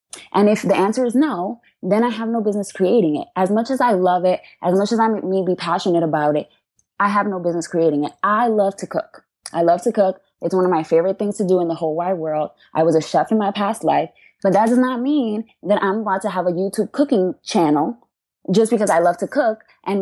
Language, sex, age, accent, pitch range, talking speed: English, female, 20-39, American, 160-205 Hz, 250 wpm